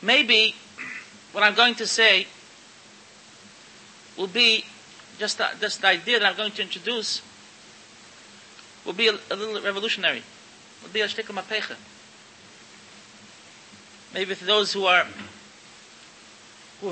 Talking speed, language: 120 wpm, English